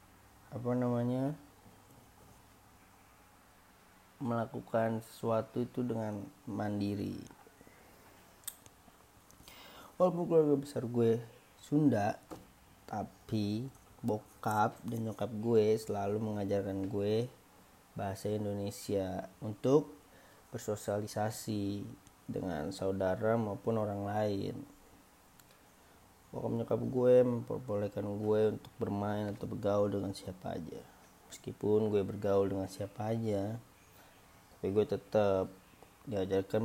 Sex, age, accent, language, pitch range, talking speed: male, 30-49, native, Indonesian, 100-115 Hz, 85 wpm